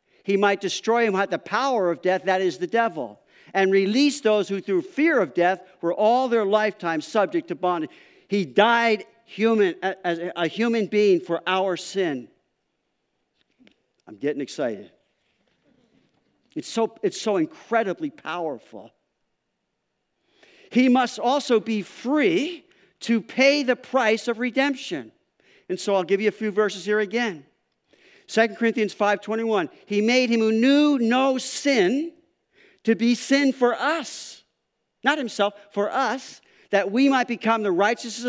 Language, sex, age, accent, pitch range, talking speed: English, male, 50-69, American, 190-255 Hz, 145 wpm